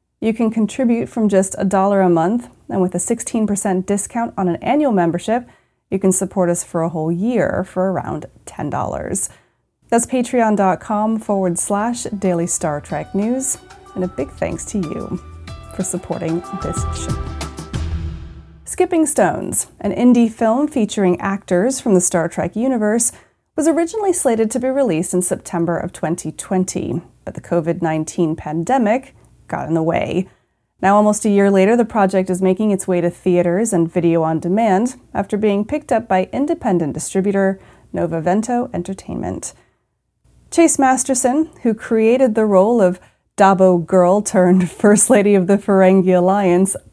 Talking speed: 155 wpm